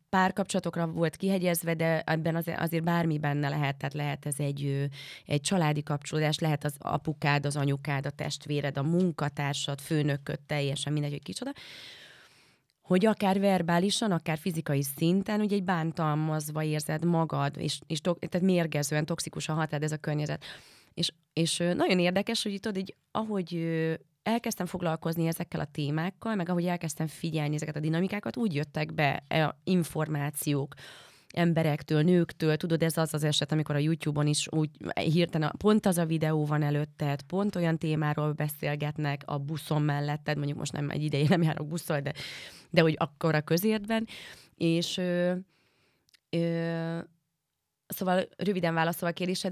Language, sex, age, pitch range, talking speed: Hungarian, female, 30-49, 150-175 Hz, 150 wpm